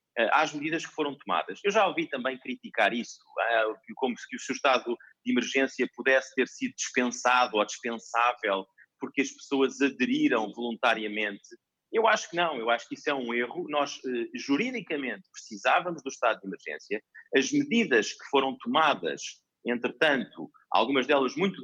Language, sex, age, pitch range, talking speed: Portuguese, male, 30-49, 130-205 Hz, 160 wpm